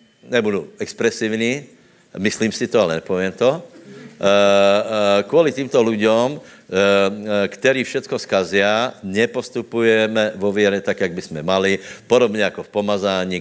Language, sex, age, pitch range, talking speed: Slovak, male, 60-79, 95-110 Hz, 125 wpm